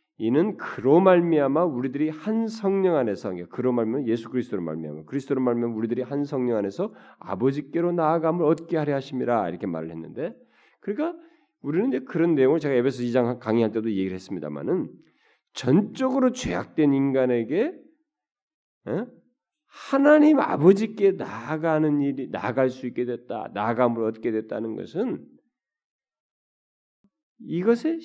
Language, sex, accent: Korean, male, native